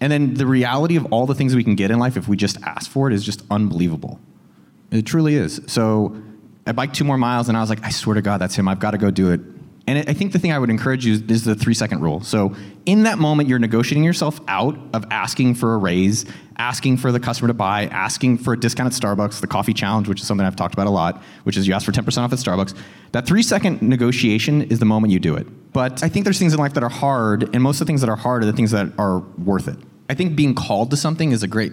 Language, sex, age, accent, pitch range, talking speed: English, male, 30-49, American, 105-130 Hz, 280 wpm